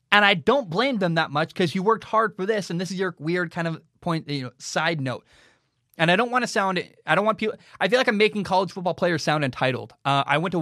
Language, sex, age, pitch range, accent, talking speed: English, male, 20-39, 135-185 Hz, American, 275 wpm